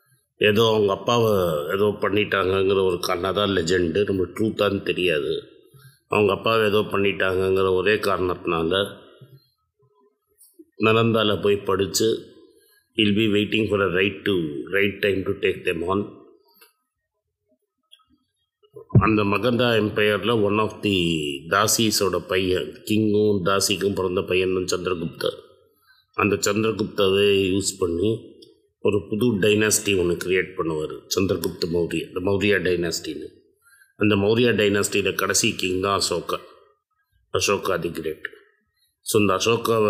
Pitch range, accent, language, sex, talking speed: 100-145 Hz, native, Tamil, male, 105 wpm